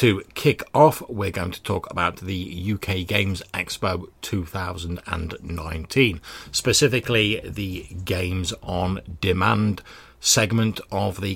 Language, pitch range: English, 90-110 Hz